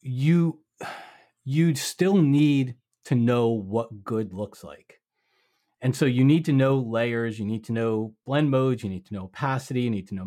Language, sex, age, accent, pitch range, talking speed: English, male, 30-49, American, 110-135 Hz, 195 wpm